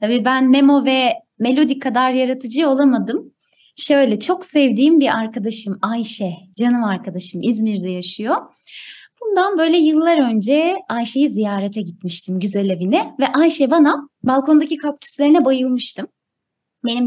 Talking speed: 120 wpm